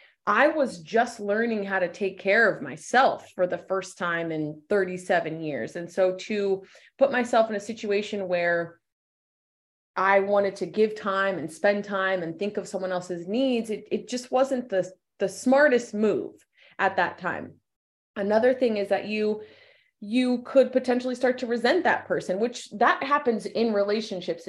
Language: English